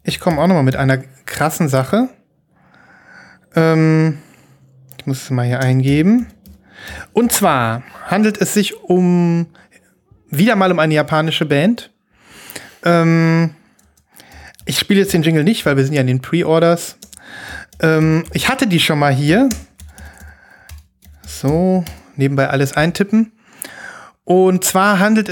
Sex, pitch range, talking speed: male, 150-205 Hz, 130 wpm